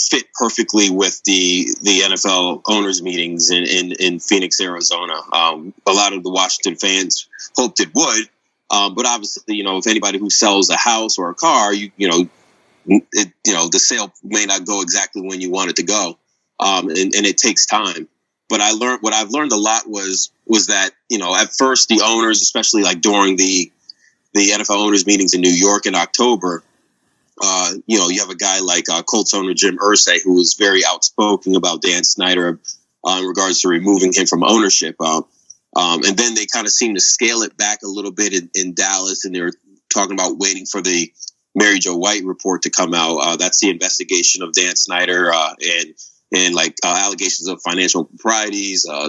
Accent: American